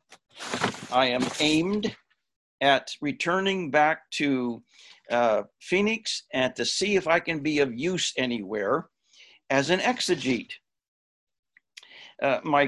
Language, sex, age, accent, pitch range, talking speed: English, male, 60-79, American, 140-195 Hz, 115 wpm